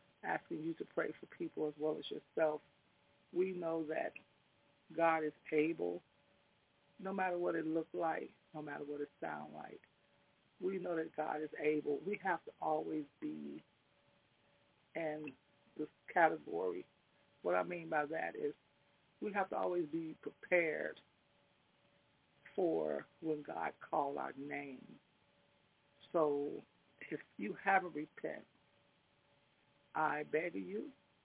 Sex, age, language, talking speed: female, 40-59, English, 135 wpm